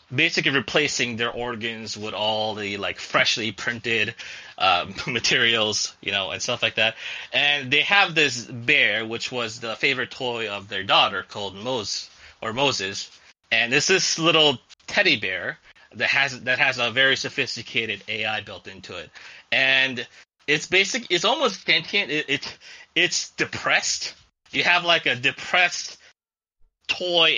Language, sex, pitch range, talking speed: English, male, 115-145 Hz, 150 wpm